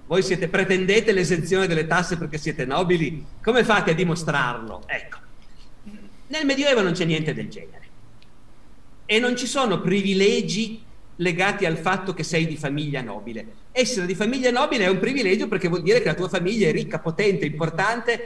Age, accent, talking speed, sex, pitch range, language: 50-69, native, 170 wpm, male, 155-205 Hz, Italian